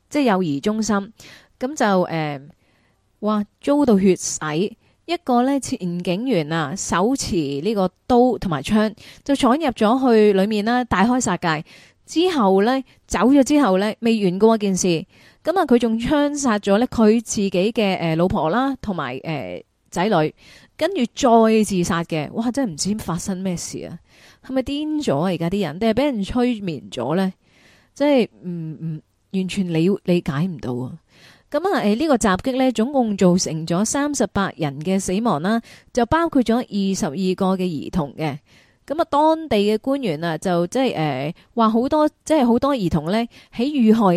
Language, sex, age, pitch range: Chinese, female, 20-39, 175-250 Hz